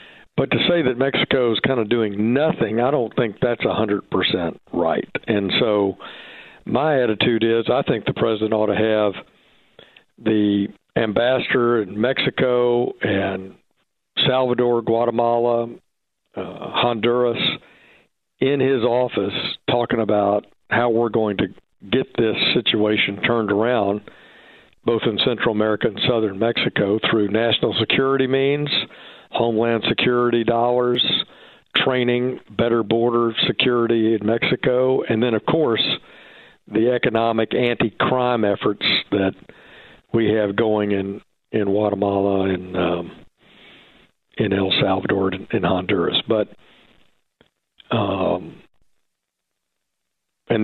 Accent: American